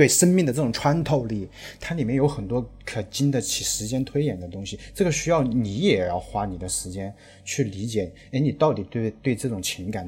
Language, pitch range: Chinese, 105-135 Hz